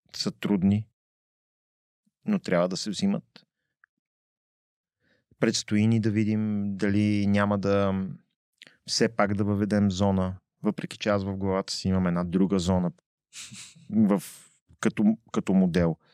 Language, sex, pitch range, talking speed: Bulgarian, male, 95-115 Hz, 125 wpm